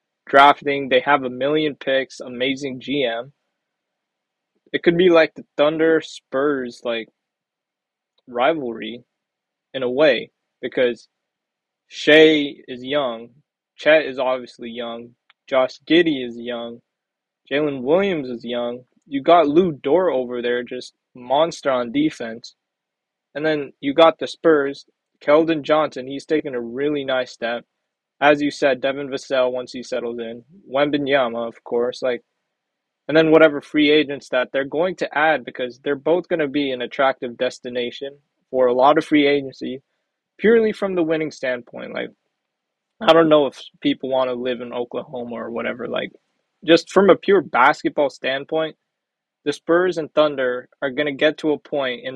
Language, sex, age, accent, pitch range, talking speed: English, male, 20-39, American, 125-155 Hz, 155 wpm